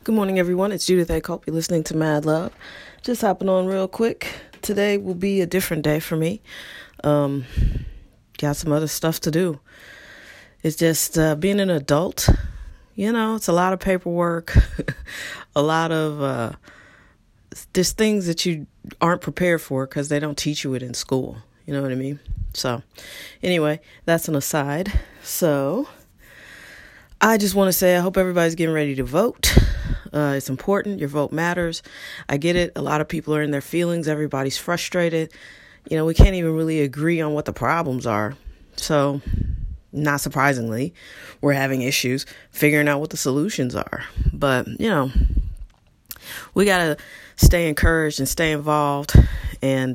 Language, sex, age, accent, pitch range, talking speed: English, female, 30-49, American, 135-175 Hz, 170 wpm